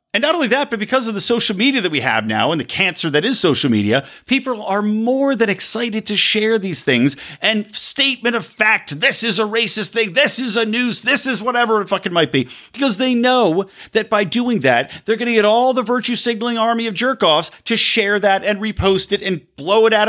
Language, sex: English, male